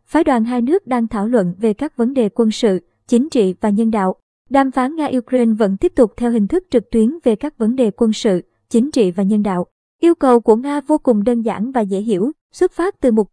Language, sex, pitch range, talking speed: Vietnamese, male, 215-255 Hz, 250 wpm